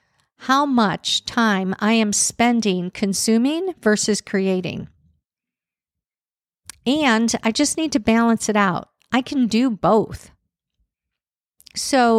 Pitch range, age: 195-260 Hz, 50-69